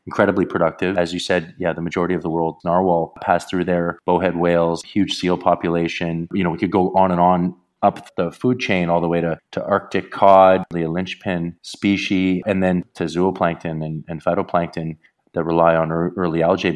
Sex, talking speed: male, 195 wpm